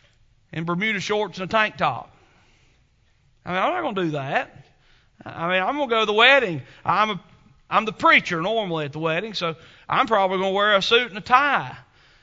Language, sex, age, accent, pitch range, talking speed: English, male, 40-59, American, 130-205 Hz, 215 wpm